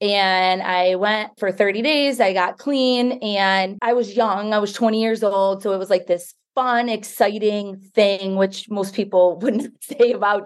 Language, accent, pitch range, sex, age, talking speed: English, American, 190-230 Hz, female, 30-49, 185 wpm